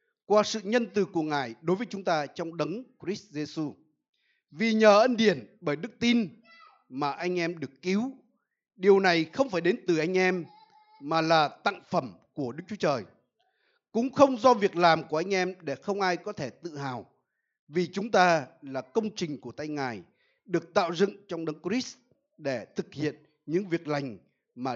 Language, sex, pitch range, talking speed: Vietnamese, male, 150-215 Hz, 190 wpm